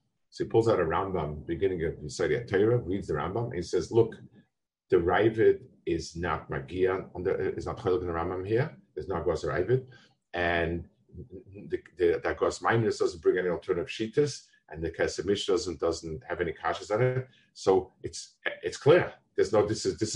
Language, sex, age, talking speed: English, male, 50-69, 190 wpm